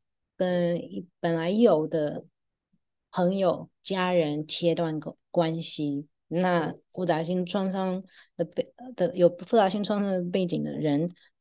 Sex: female